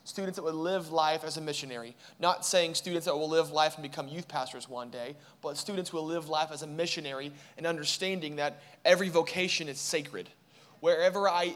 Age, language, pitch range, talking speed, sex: 20-39, English, 145-175 Hz, 200 wpm, male